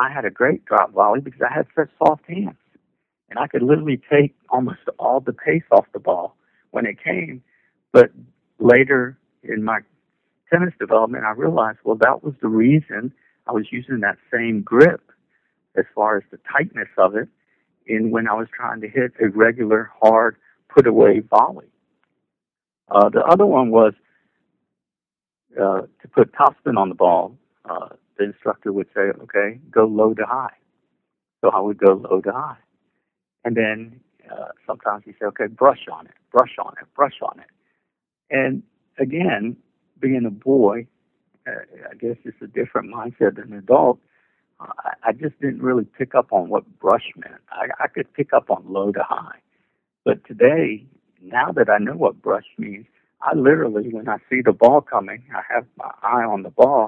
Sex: male